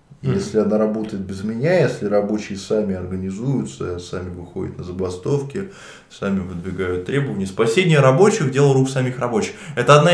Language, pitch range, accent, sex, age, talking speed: Russian, 95-140 Hz, native, male, 20-39, 140 wpm